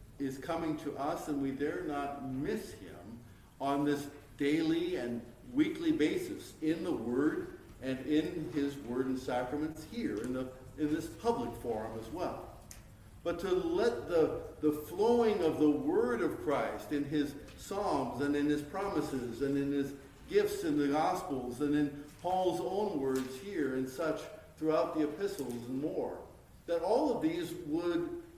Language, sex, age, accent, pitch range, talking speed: English, male, 50-69, American, 130-195 Hz, 165 wpm